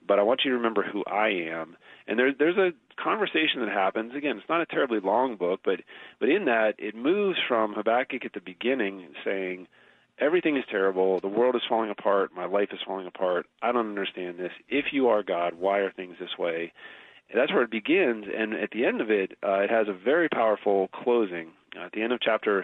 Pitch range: 95-120 Hz